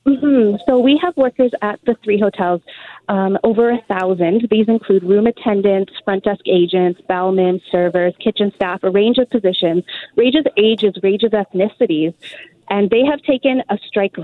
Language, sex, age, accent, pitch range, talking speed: English, female, 30-49, American, 190-230 Hz, 170 wpm